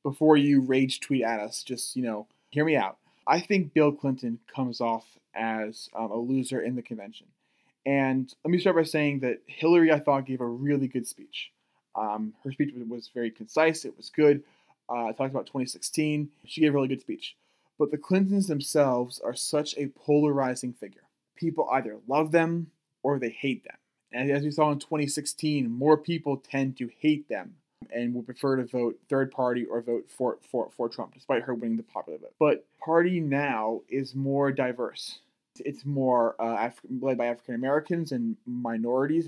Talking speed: 180 wpm